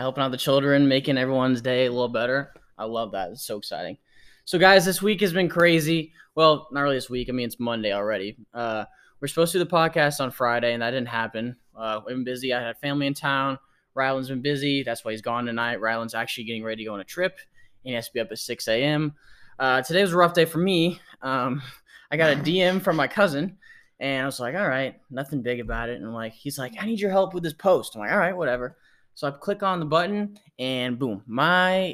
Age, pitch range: 10-29, 120-165 Hz